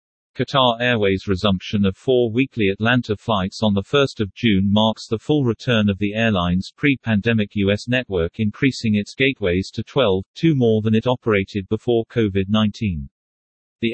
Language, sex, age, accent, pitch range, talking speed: English, male, 40-59, British, 100-120 Hz, 155 wpm